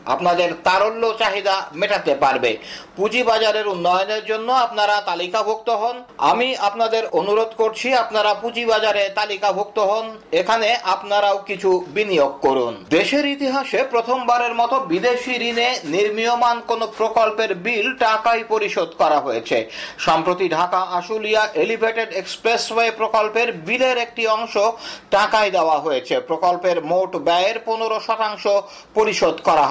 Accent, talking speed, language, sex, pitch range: native, 40 wpm, Bengali, male, 200-235 Hz